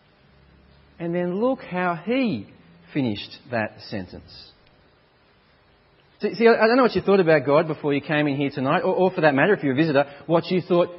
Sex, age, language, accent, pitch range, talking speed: male, 40-59, English, Australian, 135-175 Hz, 185 wpm